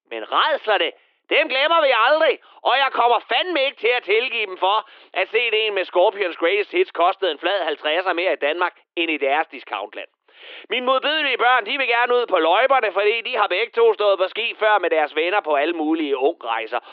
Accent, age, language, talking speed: native, 30-49, Danish, 205 wpm